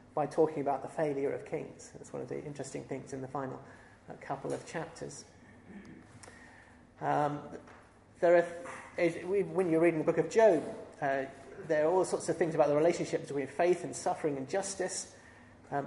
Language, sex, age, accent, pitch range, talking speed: English, male, 30-49, British, 135-175 Hz, 180 wpm